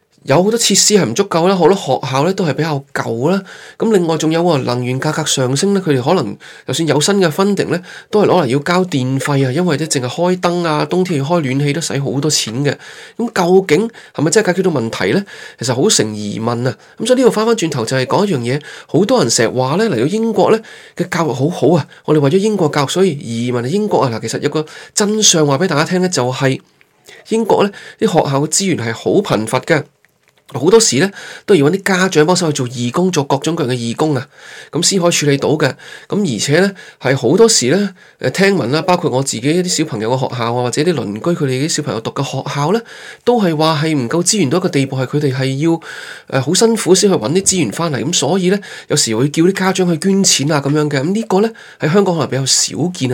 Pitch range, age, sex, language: 135-185 Hz, 20-39, male, Chinese